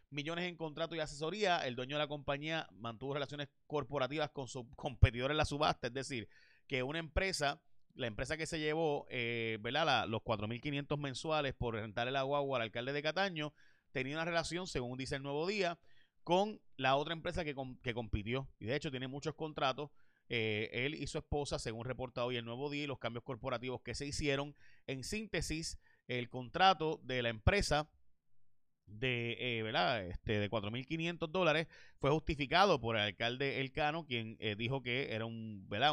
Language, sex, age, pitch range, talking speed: Spanish, male, 30-49, 115-150 Hz, 180 wpm